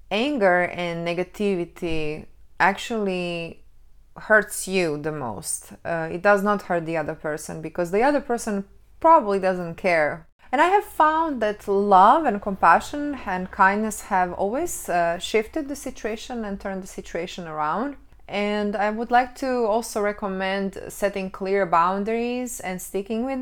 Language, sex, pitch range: English, female, 175-210 Hz